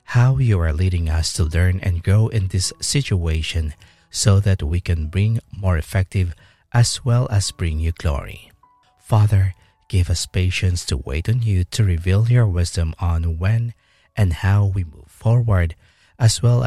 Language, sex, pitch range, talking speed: English, male, 85-110 Hz, 165 wpm